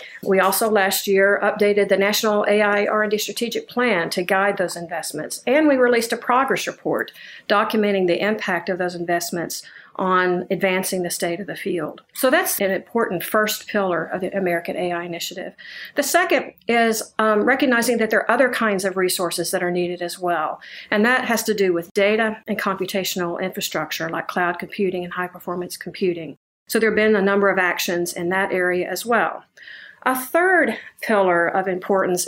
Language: English